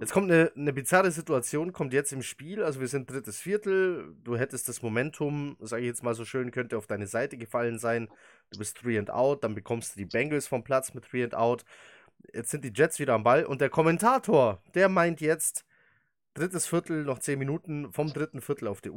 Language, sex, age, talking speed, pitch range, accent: German, male, 20-39, 220 wpm, 115-155 Hz, German